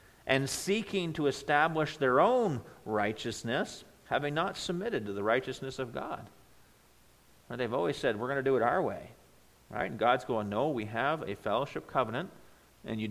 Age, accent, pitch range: 50-69, American, 110-145 Hz